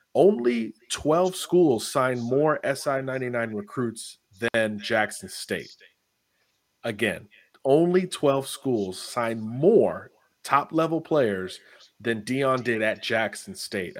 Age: 30-49